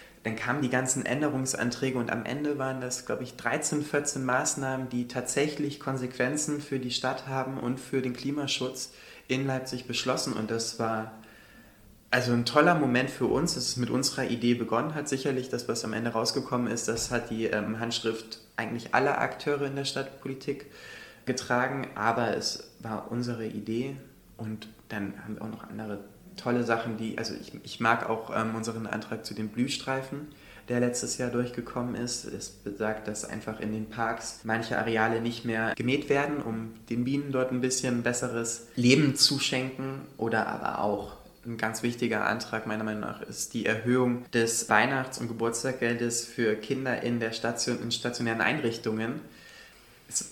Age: 20-39